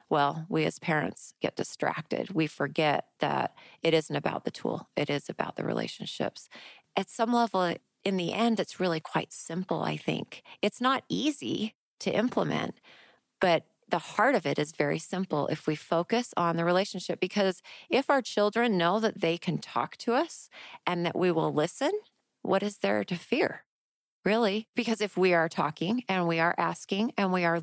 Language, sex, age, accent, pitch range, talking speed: English, female, 30-49, American, 170-210 Hz, 180 wpm